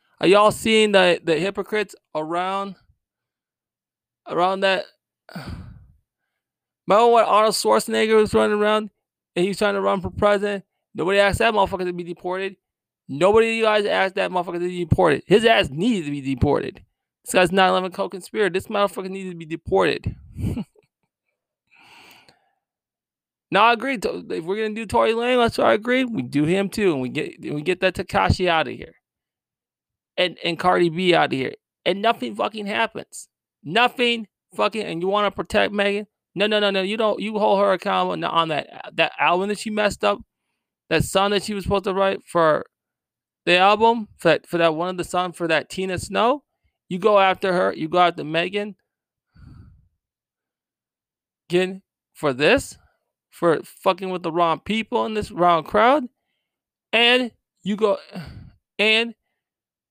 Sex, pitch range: male, 180-215 Hz